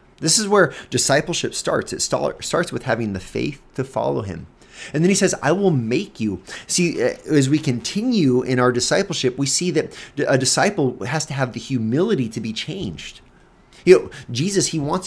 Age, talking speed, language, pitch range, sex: 30-49, 185 wpm, English, 110-145 Hz, male